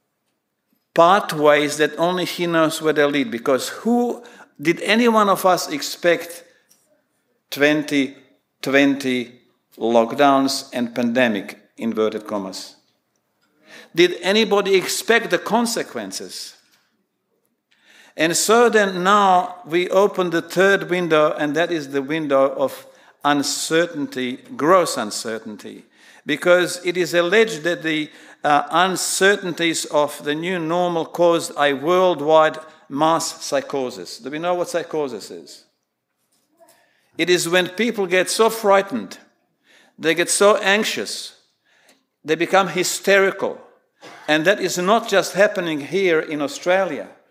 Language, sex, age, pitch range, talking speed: English, male, 50-69, 150-195 Hz, 115 wpm